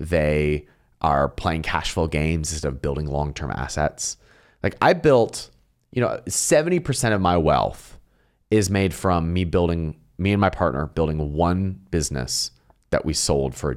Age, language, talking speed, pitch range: 30-49, English, 160 wpm, 75-110 Hz